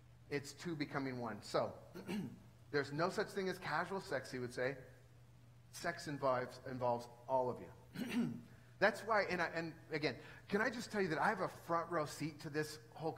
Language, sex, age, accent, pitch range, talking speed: English, male, 40-59, American, 135-175 Hz, 185 wpm